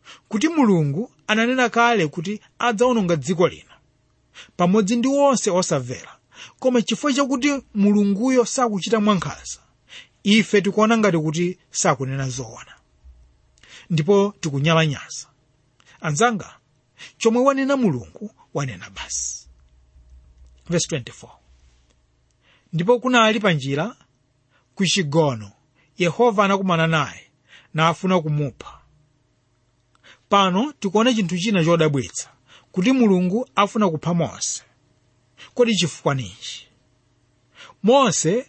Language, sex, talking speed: English, male, 95 wpm